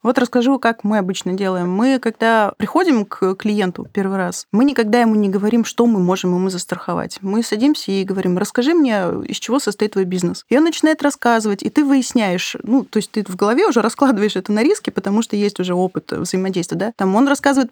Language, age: Russian, 20-39